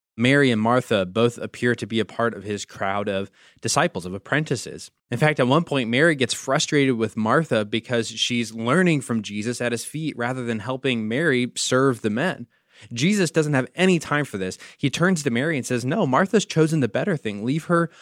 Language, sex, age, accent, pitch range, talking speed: English, male, 20-39, American, 115-155 Hz, 205 wpm